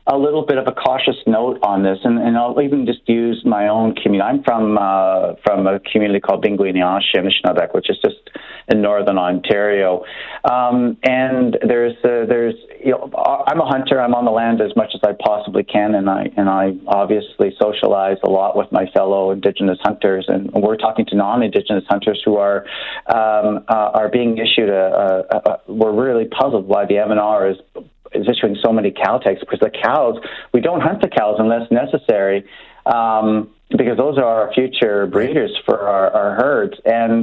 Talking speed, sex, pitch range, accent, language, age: 185 wpm, male, 100-120 Hz, American, English, 40-59